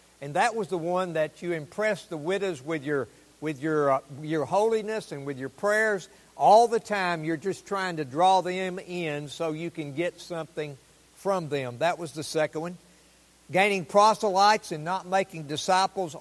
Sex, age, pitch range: male, 60-79, 155-200 Hz